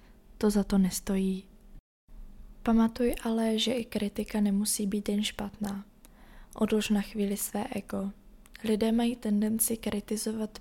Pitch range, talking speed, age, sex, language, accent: 200-220 Hz, 125 wpm, 20-39, female, Czech, native